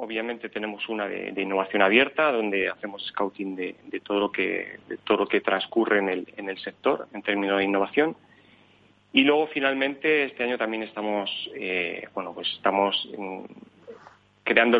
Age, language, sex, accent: 30-49, Spanish, male, Spanish